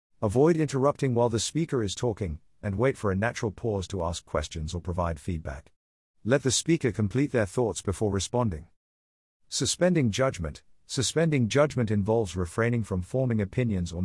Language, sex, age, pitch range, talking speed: English, male, 50-69, 90-125 Hz, 160 wpm